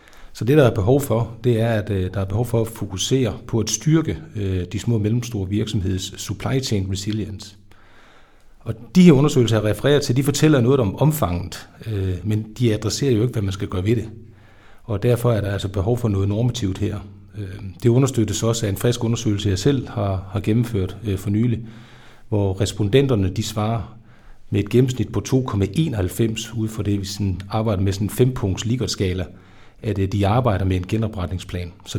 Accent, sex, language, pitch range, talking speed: native, male, Danish, 100-115 Hz, 195 wpm